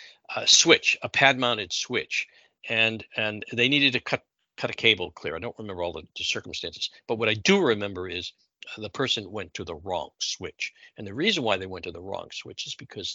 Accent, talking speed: American, 215 wpm